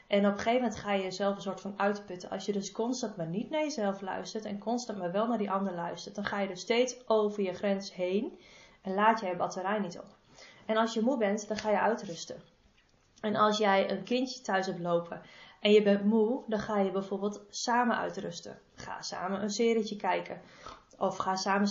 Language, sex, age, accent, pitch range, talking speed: Dutch, female, 20-39, Dutch, 200-235 Hz, 220 wpm